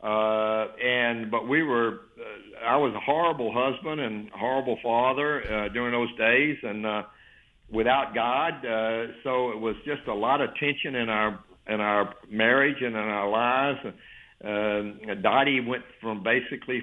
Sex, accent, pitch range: male, American, 110-130 Hz